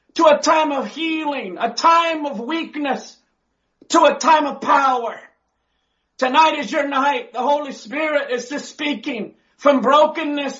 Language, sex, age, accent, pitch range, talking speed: English, male, 50-69, American, 270-305 Hz, 145 wpm